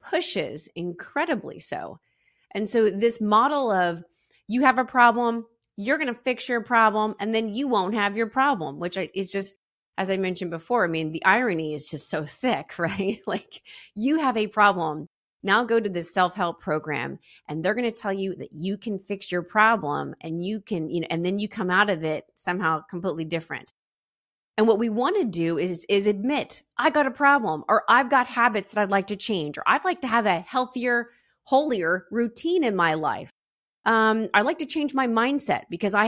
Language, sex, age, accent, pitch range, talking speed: English, female, 30-49, American, 170-235 Hz, 200 wpm